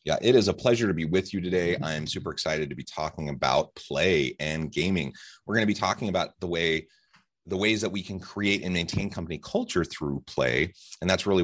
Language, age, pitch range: English, 30-49, 80-110 Hz